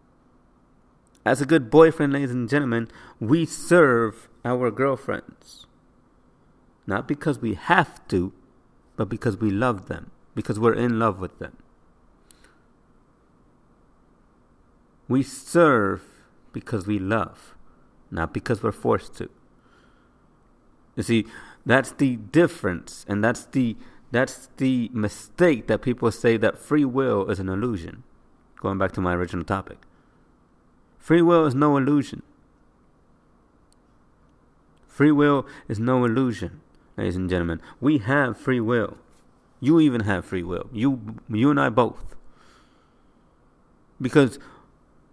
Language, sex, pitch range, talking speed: English, male, 100-135 Hz, 120 wpm